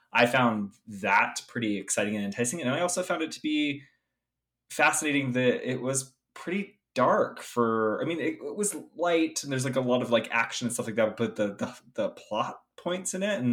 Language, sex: English, male